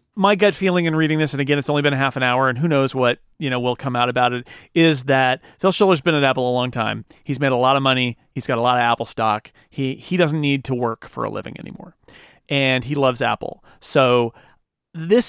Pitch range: 125-160 Hz